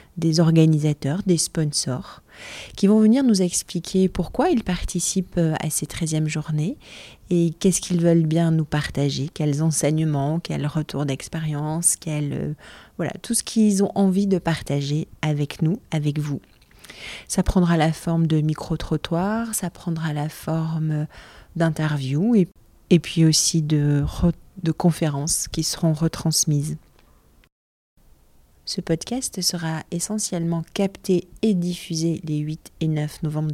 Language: French